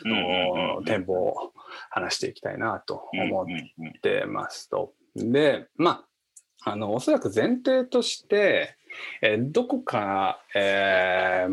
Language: Japanese